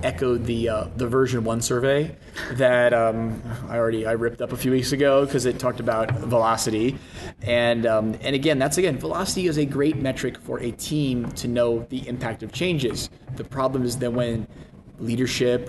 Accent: American